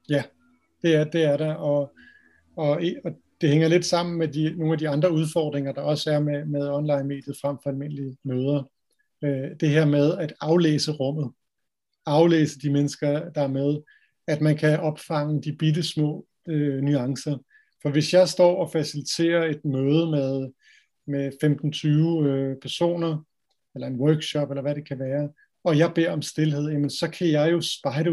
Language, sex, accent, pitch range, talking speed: Danish, male, native, 145-170 Hz, 175 wpm